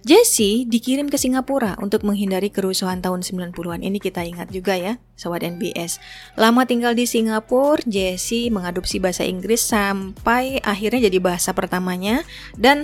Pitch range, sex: 190-235 Hz, female